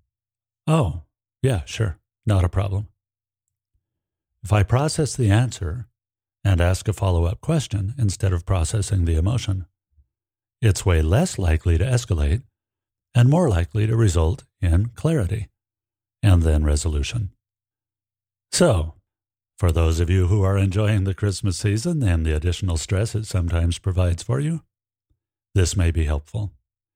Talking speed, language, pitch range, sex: 135 wpm, English, 90-110 Hz, male